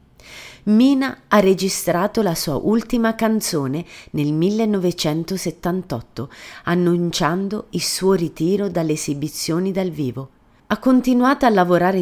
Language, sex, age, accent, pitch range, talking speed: Italian, female, 30-49, native, 145-190 Hz, 105 wpm